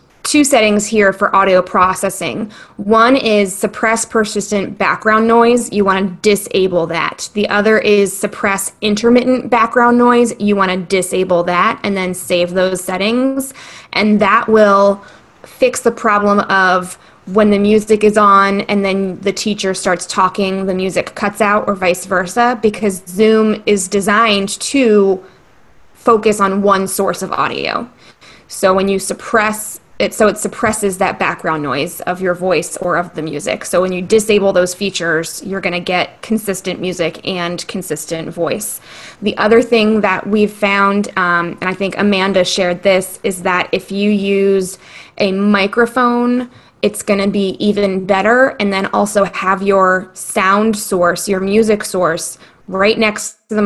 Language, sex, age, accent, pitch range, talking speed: English, female, 20-39, American, 185-215 Hz, 160 wpm